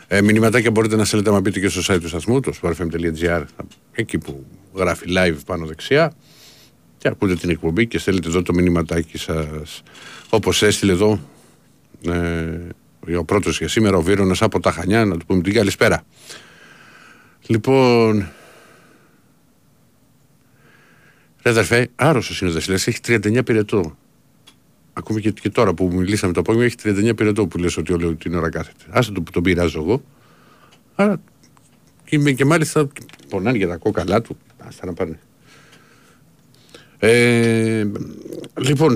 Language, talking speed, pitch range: Greek, 145 wpm, 90-120 Hz